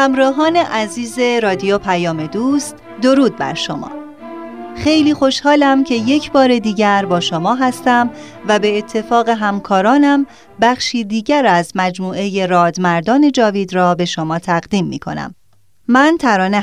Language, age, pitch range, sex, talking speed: Persian, 30-49, 185-260 Hz, female, 125 wpm